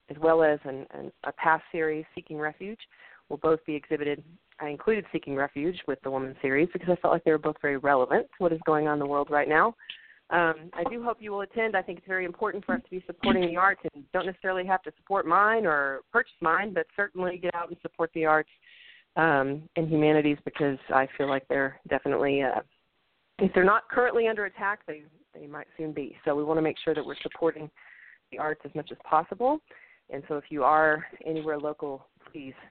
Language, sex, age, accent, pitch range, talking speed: English, female, 30-49, American, 145-180 Hz, 225 wpm